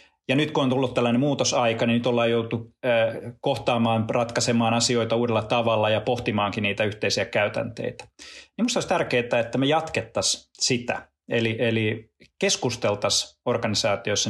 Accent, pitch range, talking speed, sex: native, 105-125 Hz, 140 wpm, male